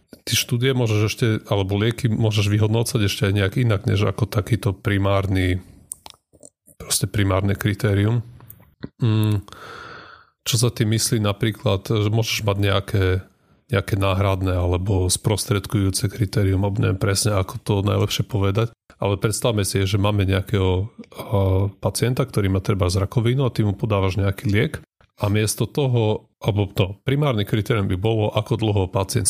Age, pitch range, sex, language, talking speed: 30-49, 95-115 Hz, male, Slovak, 140 wpm